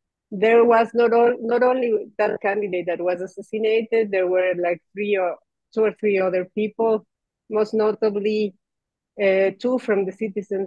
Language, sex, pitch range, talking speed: English, female, 180-215 Hz, 155 wpm